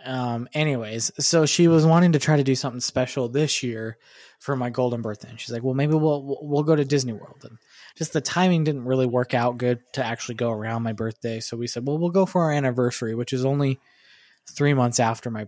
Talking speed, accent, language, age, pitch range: 235 wpm, American, English, 20-39, 115-140 Hz